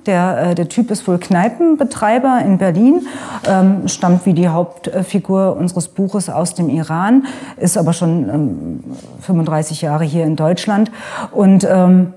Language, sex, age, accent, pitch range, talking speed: German, female, 40-59, German, 155-195 Hz, 140 wpm